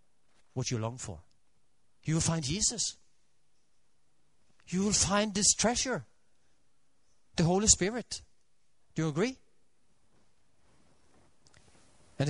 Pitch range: 115-190 Hz